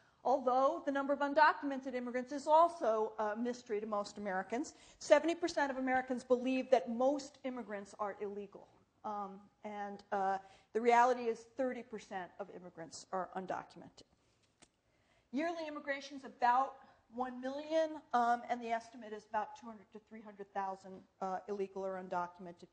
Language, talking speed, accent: English, 135 wpm, American